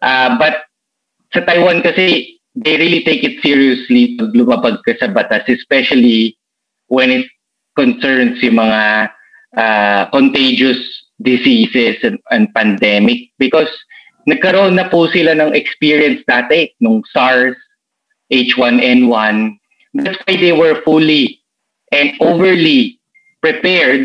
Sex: male